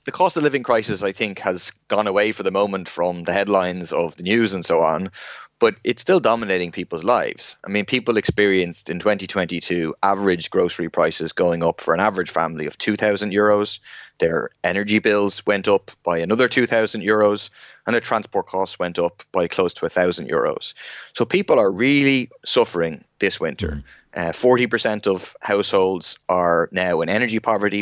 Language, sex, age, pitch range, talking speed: English, male, 20-39, 90-115 Hz, 185 wpm